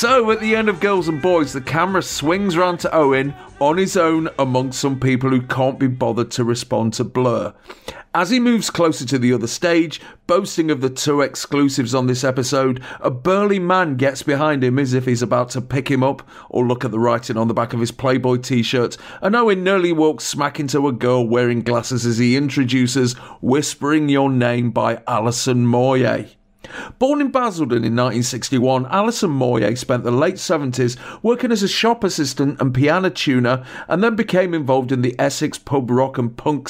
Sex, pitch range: male, 125-155 Hz